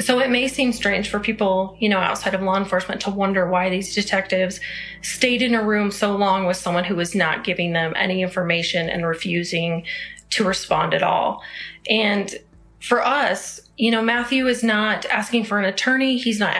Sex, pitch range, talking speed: female, 195-240 Hz, 190 wpm